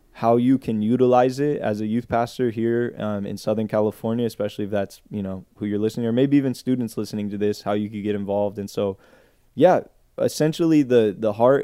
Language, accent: English, American